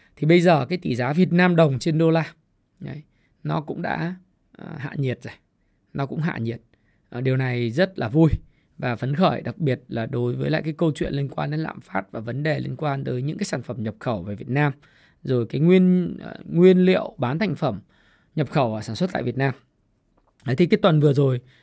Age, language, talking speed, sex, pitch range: 20-39, Vietnamese, 235 wpm, male, 130-180 Hz